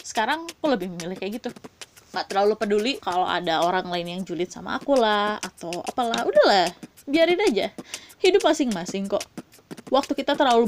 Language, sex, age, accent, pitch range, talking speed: Indonesian, female, 20-39, native, 200-305 Hz, 165 wpm